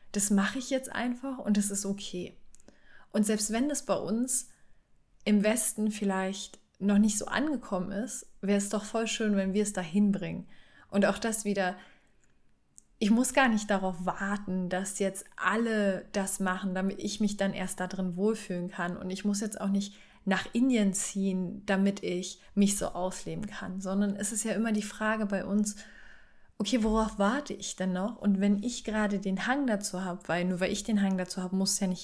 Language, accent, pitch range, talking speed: German, German, 190-215 Hz, 200 wpm